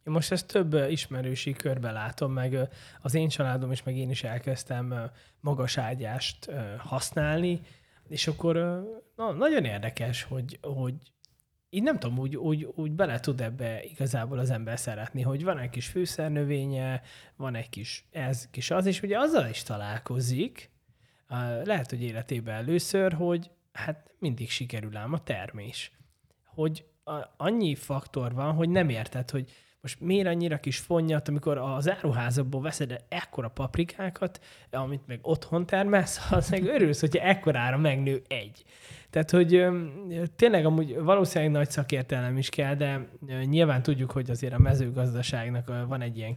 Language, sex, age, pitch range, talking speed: Hungarian, male, 20-39, 125-155 Hz, 150 wpm